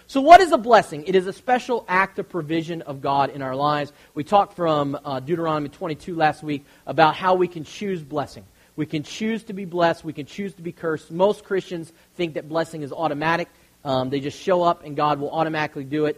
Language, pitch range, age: English, 155-205 Hz, 40-59